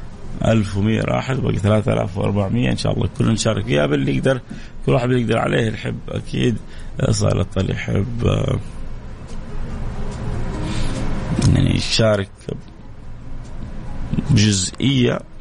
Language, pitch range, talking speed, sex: English, 105-130 Hz, 100 wpm, male